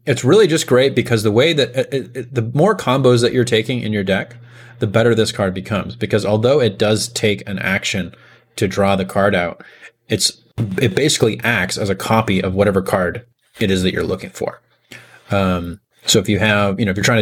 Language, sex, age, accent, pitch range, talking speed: English, male, 30-49, American, 95-115 Hz, 215 wpm